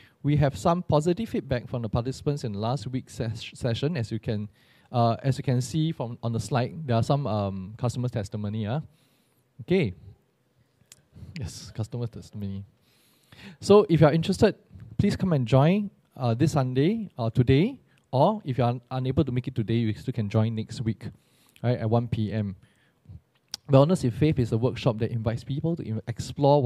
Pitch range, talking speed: 115-150 Hz, 185 wpm